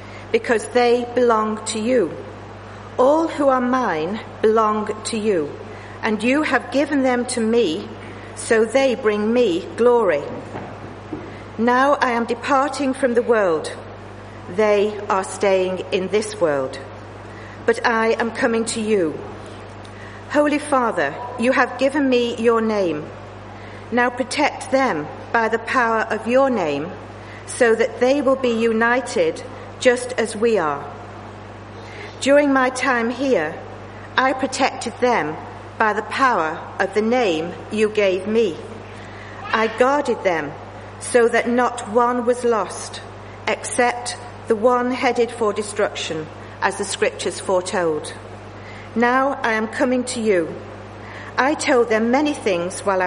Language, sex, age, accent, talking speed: English, female, 50-69, British, 130 wpm